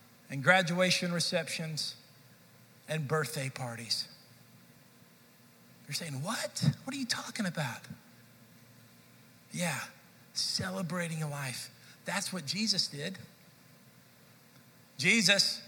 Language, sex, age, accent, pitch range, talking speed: English, male, 50-69, American, 140-180 Hz, 90 wpm